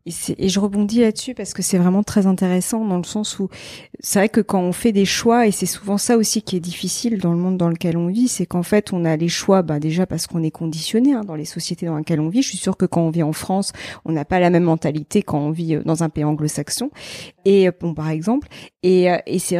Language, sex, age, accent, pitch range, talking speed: French, female, 40-59, French, 175-235 Hz, 270 wpm